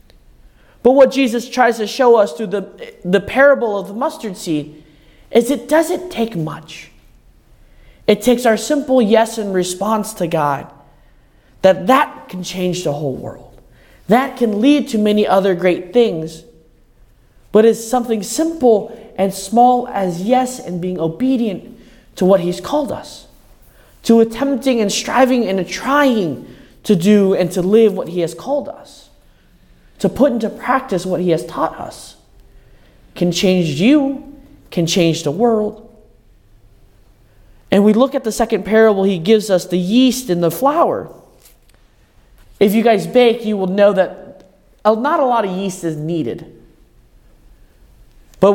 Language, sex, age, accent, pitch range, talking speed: English, male, 20-39, American, 165-235 Hz, 150 wpm